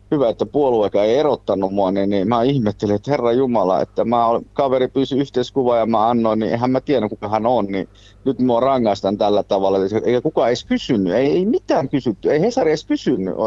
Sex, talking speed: male, 205 wpm